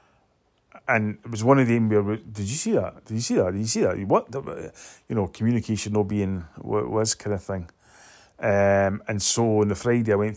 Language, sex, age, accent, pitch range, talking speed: English, male, 30-49, British, 100-115 Hz, 225 wpm